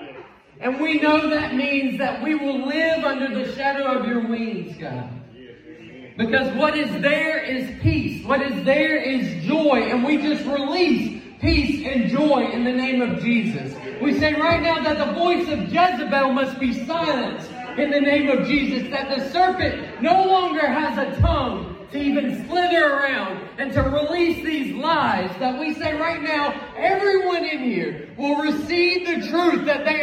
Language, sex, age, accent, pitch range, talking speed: English, male, 30-49, American, 245-305 Hz, 175 wpm